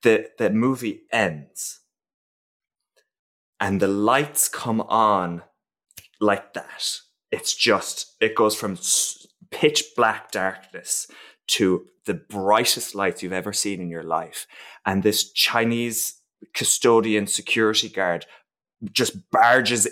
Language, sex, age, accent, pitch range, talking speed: English, male, 20-39, British, 105-150 Hz, 110 wpm